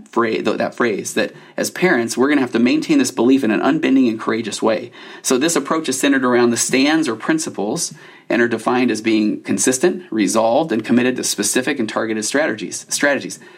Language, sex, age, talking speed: English, male, 30-49, 195 wpm